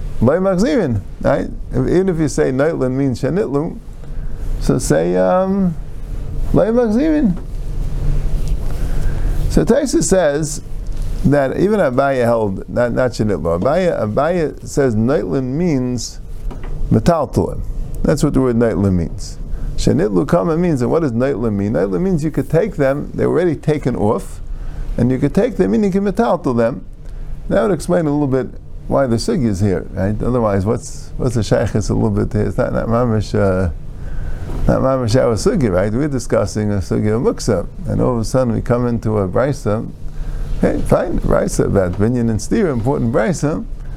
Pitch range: 110-145 Hz